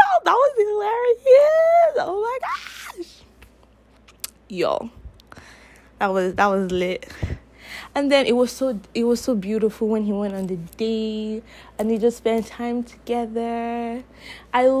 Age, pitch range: 20-39, 220-340 Hz